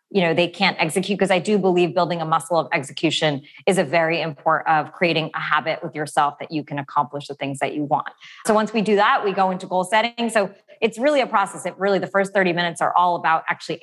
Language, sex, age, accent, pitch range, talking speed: English, female, 20-39, American, 160-195 Hz, 250 wpm